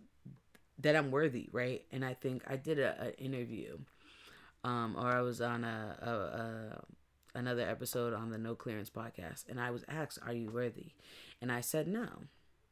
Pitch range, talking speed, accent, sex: 115-130 Hz, 180 wpm, American, female